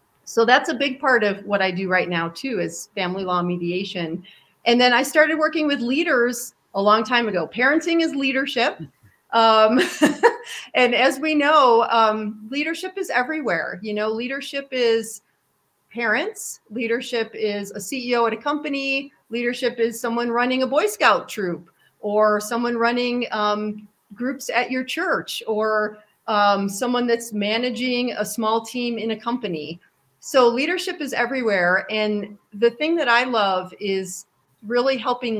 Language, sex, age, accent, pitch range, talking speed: English, female, 40-59, American, 195-245 Hz, 155 wpm